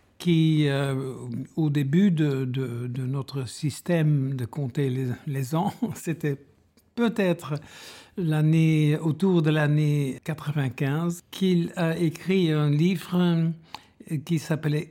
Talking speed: 115 wpm